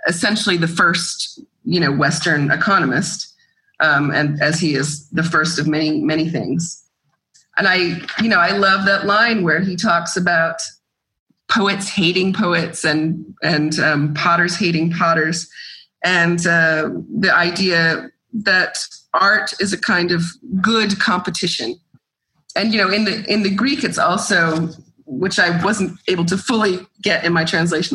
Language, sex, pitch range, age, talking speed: English, female, 160-195 Hz, 30-49, 150 wpm